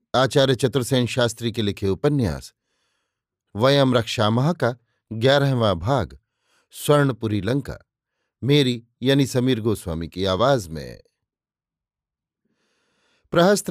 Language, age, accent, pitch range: Hindi, 50-69, native, 110-145 Hz